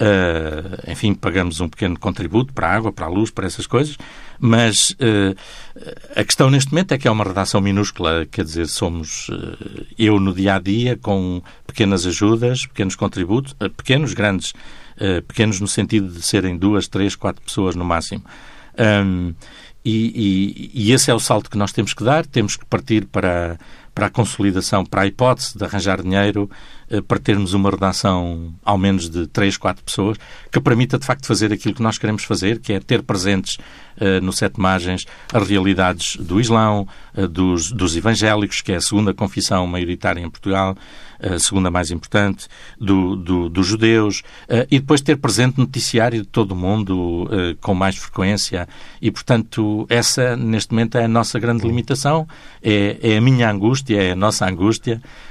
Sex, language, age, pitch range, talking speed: male, Portuguese, 50-69, 95-115 Hz, 175 wpm